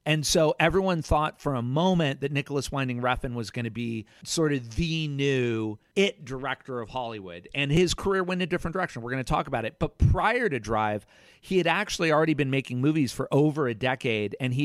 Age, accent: 40-59, American